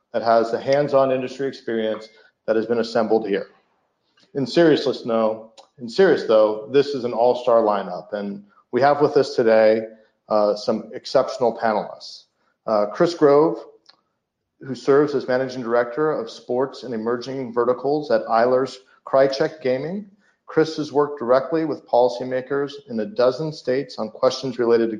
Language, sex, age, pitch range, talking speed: English, male, 40-59, 120-155 Hz, 145 wpm